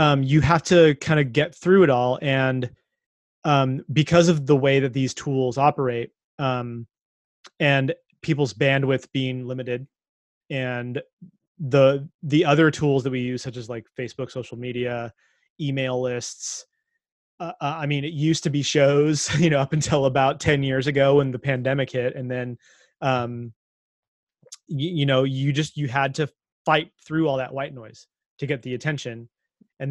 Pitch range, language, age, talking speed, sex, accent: 130-155 Hz, English, 30-49, 170 wpm, male, American